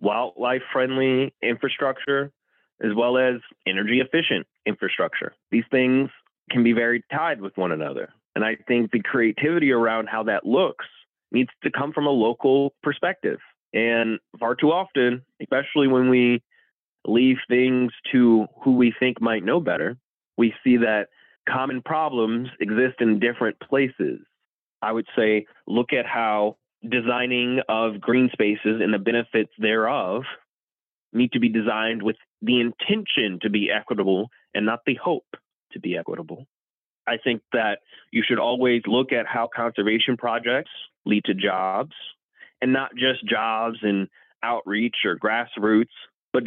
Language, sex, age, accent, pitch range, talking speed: English, male, 30-49, American, 110-130 Hz, 145 wpm